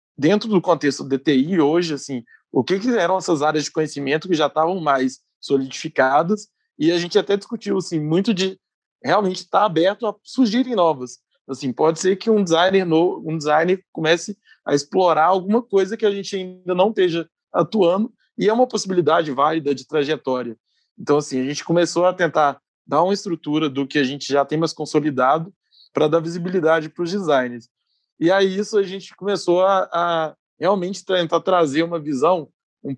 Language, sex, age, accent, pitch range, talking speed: Portuguese, male, 20-39, Brazilian, 145-185 Hz, 180 wpm